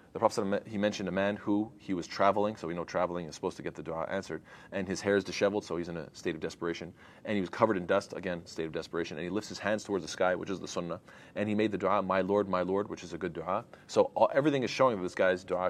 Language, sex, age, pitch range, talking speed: English, male, 30-49, 90-100 Hz, 300 wpm